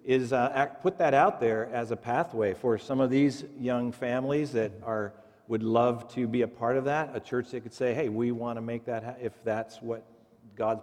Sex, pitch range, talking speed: male, 110-135 Hz, 220 wpm